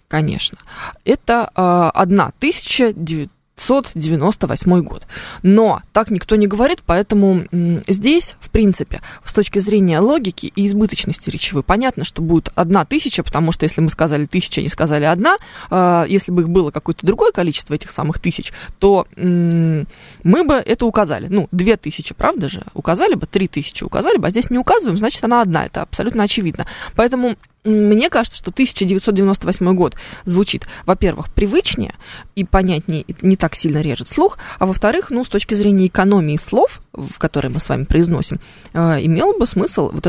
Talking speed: 160 wpm